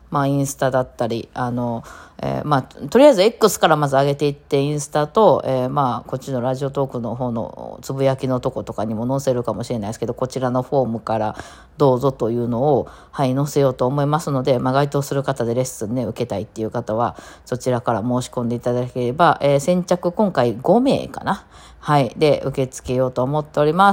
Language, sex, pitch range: Japanese, female, 125-165 Hz